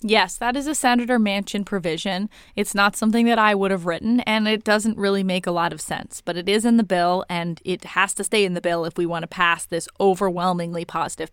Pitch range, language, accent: 180-230 Hz, English, American